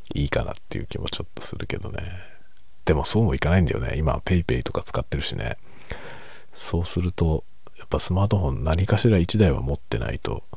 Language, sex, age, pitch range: Japanese, male, 50-69, 75-105 Hz